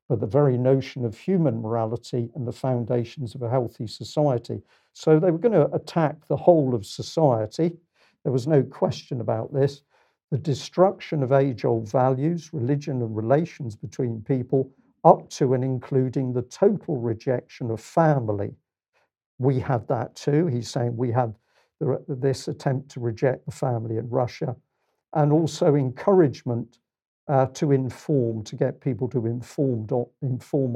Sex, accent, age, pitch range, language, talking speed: male, British, 50-69, 120-150 Hz, English, 145 wpm